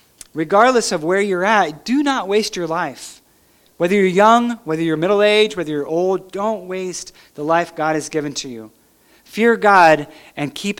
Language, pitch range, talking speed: English, 165-210 Hz, 180 wpm